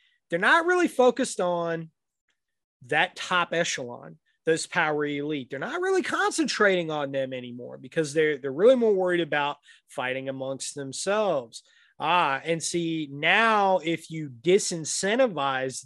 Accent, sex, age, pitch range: American, male, 30-49, 140-180 Hz